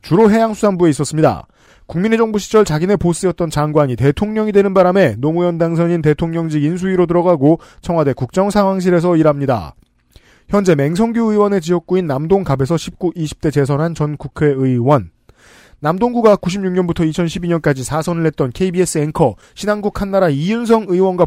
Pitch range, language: 140-185 Hz, Korean